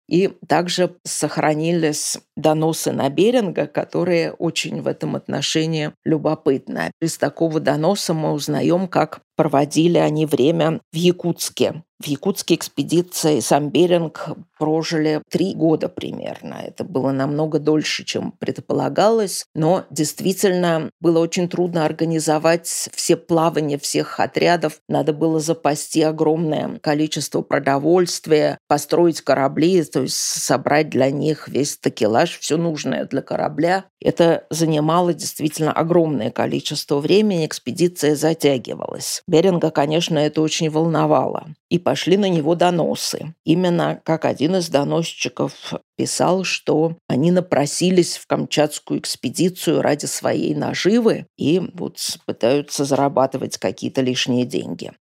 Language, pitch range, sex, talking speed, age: Russian, 150-170 Hz, female, 115 wpm, 50-69